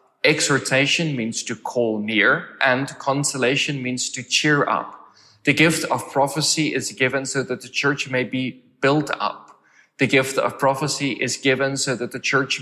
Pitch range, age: 115-140 Hz, 20-39